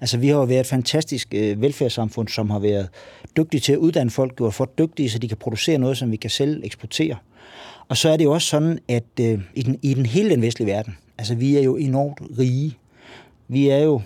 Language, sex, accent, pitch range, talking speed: Danish, male, native, 115-140 Hz, 240 wpm